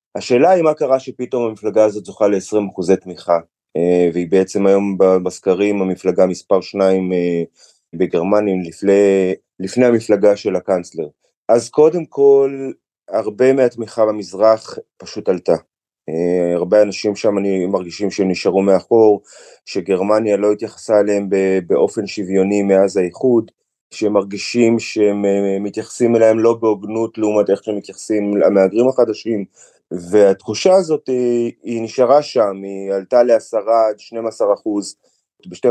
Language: Hebrew